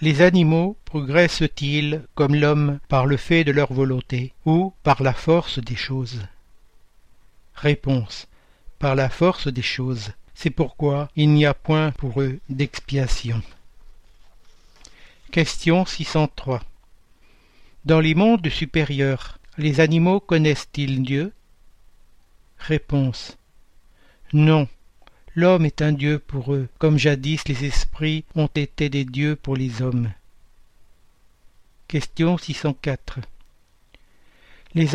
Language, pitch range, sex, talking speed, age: French, 130-160 Hz, male, 110 wpm, 60-79